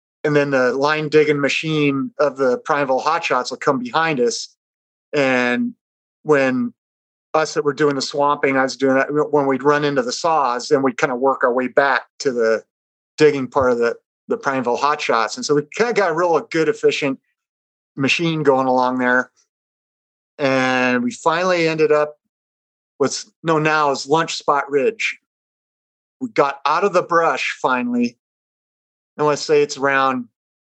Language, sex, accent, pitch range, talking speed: English, male, American, 135-155 Hz, 175 wpm